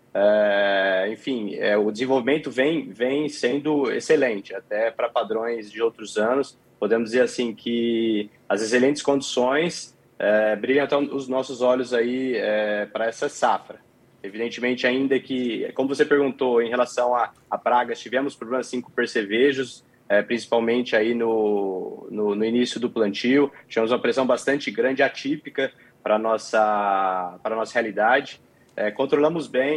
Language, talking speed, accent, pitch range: Portuguese, 145 wpm, Brazilian, 115-140 Hz